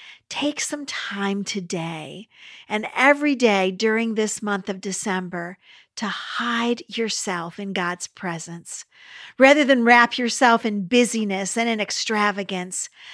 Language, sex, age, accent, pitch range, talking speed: English, female, 50-69, American, 195-270 Hz, 125 wpm